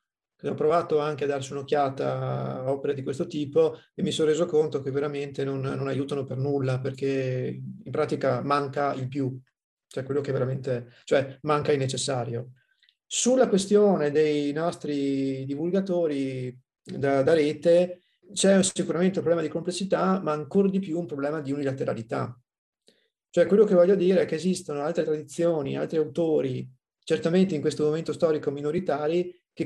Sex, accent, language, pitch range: male, native, Italian, 135-165 Hz